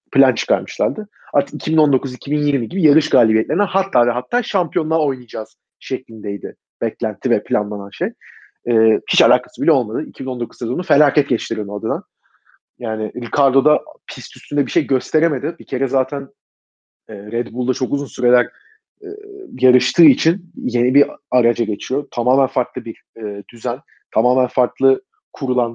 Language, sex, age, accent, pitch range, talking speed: Turkish, male, 40-59, native, 125-145 Hz, 135 wpm